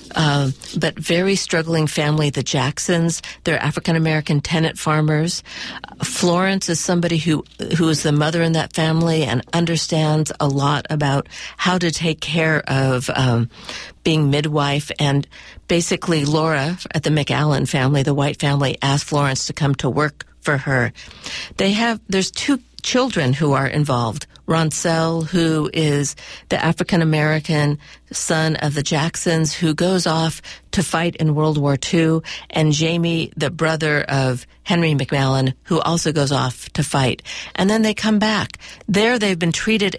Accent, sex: American, female